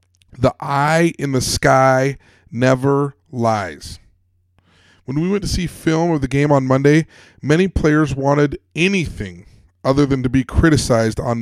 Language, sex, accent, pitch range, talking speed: English, male, American, 115-160 Hz, 145 wpm